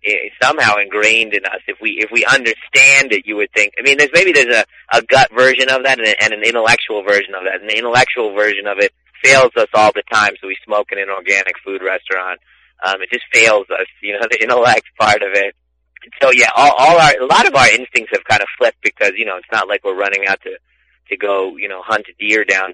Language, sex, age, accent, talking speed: English, male, 30-49, American, 250 wpm